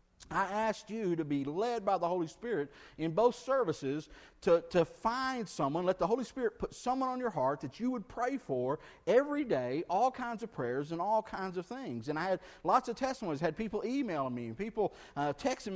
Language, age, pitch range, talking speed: English, 50-69, 160-250 Hz, 210 wpm